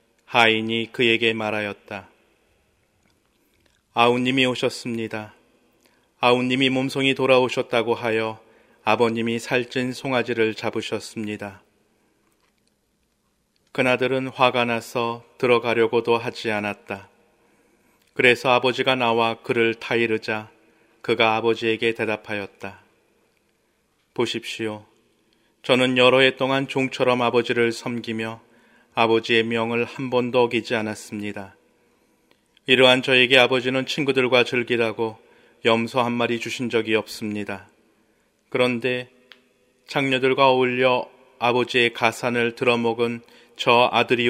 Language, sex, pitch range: Korean, male, 110-125 Hz